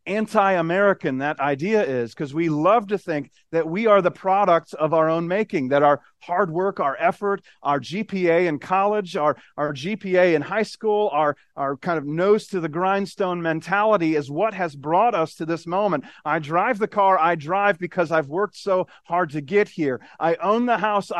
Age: 40-59